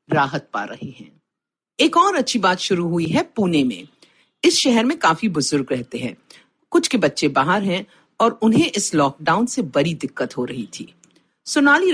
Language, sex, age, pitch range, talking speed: Hindi, female, 50-69, 165-265 Hz, 180 wpm